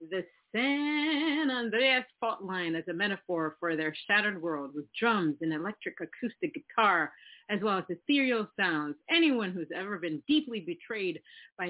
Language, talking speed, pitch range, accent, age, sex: English, 155 wpm, 180-235 Hz, American, 40-59, female